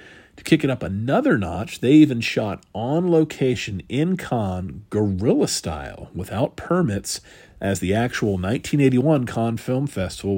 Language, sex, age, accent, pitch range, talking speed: English, male, 40-59, American, 95-120 Hz, 140 wpm